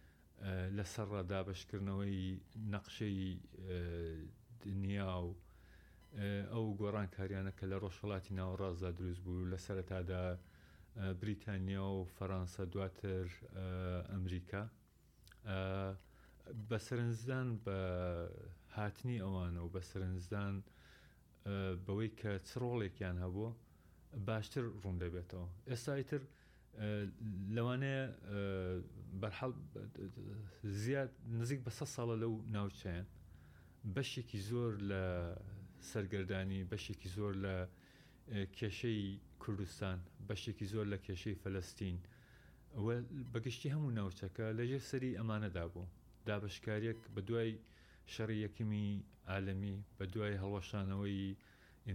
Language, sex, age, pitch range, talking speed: English, male, 40-59, 95-110 Hz, 80 wpm